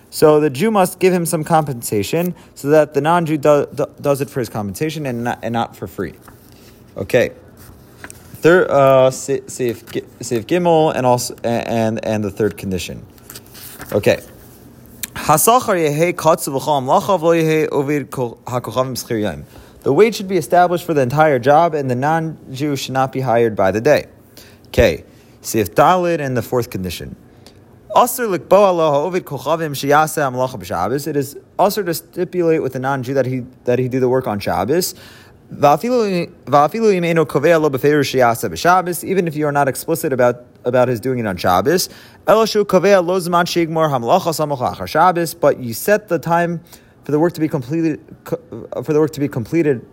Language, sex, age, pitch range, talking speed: English, male, 30-49, 125-170 Hz, 130 wpm